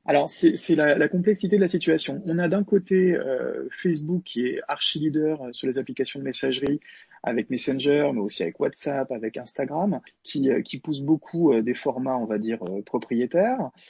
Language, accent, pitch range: French, French, 125-175 Hz